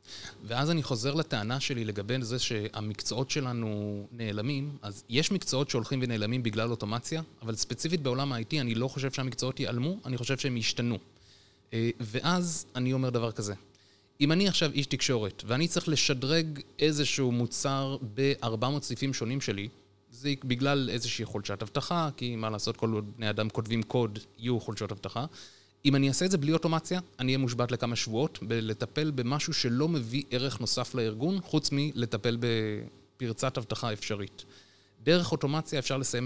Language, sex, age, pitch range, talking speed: Hebrew, male, 20-39, 110-140 Hz, 155 wpm